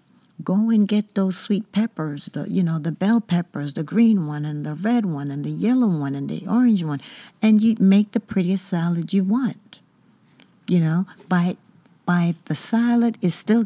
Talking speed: 185 wpm